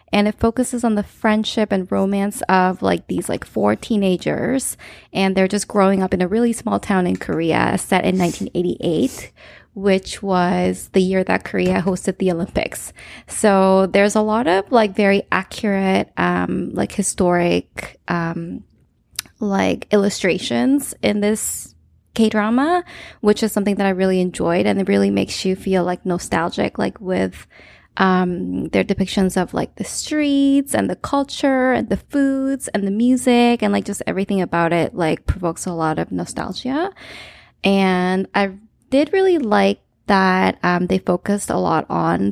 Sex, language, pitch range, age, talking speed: female, English, 180-215 Hz, 20-39, 160 wpm